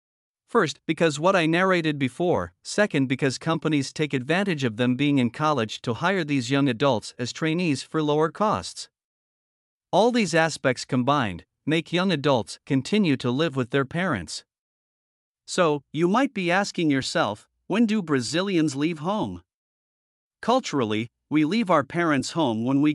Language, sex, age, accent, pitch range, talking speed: English, male, 50-69, American, 135-175 Hz, 150 wpm